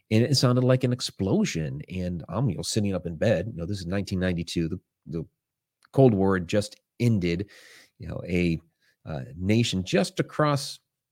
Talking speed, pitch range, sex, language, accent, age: 185 wpm, 90-125 Hz, male, English, American, 30-49